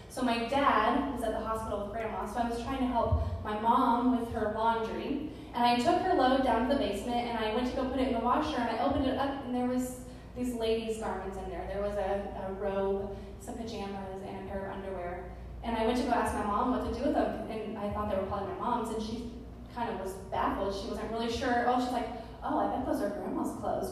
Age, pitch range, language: 20-39, 205-250 Hz, English